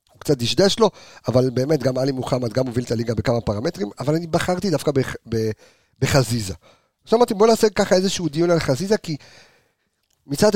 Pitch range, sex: 110-150 Hz, male